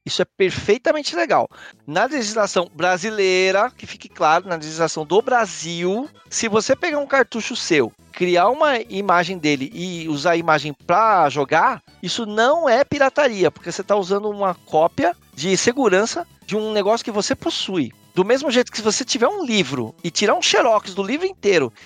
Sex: male